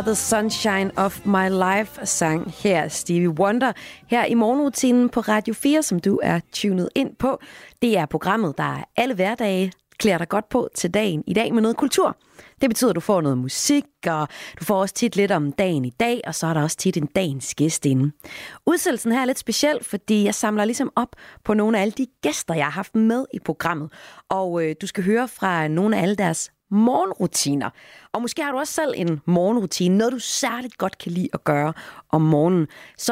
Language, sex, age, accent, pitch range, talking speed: Danish, female, 30-49, native, 170-230 Hz, 210 wpm